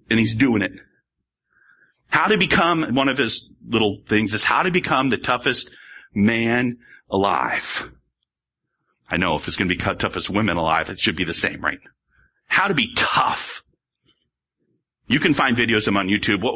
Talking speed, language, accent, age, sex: 175 wpm, English, American, 40-59, male